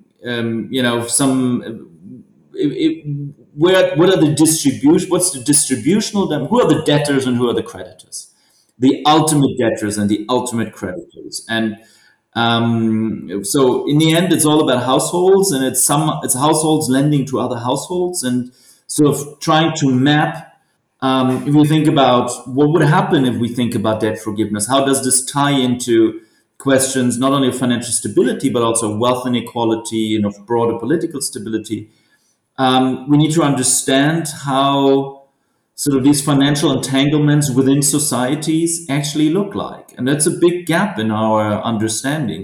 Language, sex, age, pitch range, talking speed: English, male, 30-49, 120-150 Hz, 160 wpm